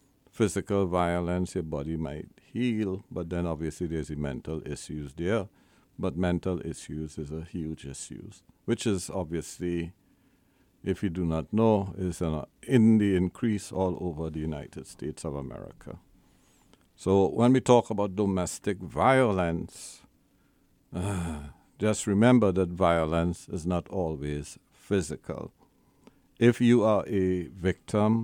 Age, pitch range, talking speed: 60-79, 85-105 Hz, 125 wpm